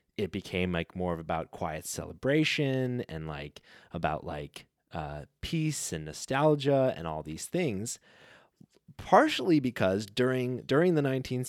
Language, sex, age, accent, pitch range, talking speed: English, male, 20-39, American, 100-135 Hz, 135 wpm